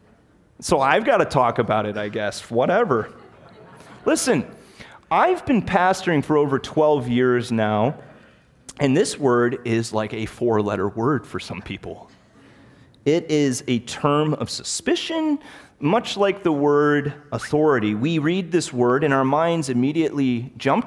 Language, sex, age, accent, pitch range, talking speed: English, male, 30-49, American, 120-175 Hz, 145 wpm